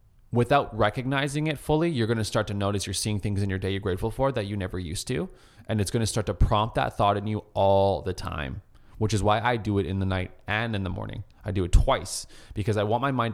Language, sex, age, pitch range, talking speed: English, male, 20-39, 95-110 Hz, 270 wpm